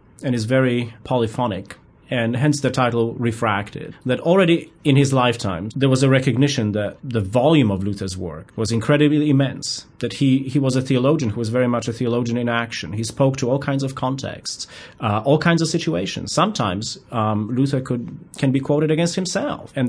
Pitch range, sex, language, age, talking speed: 110-140 Hz, male, English, 30-49, 190 wpm